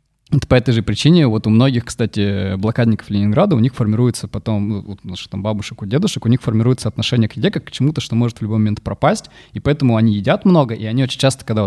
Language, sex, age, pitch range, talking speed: Russian, male, 20-39, 105-125 Hz, 230 wpm